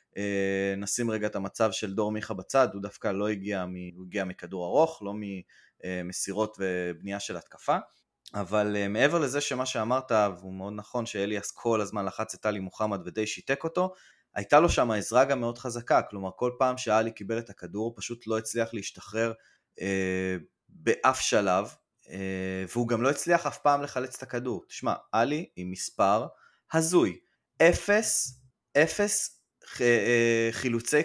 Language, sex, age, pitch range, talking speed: Hebrew, male, 20-39, 100-130 Hz, 155 wpm